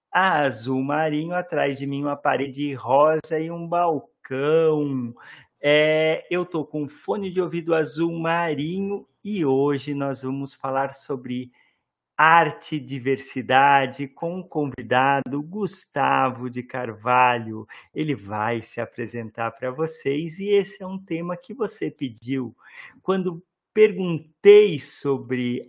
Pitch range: 130-160 Hz